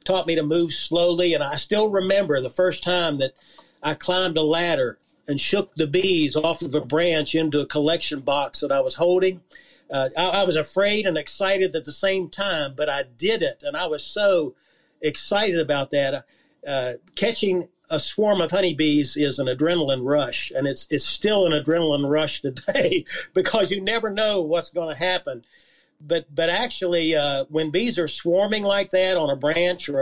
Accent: American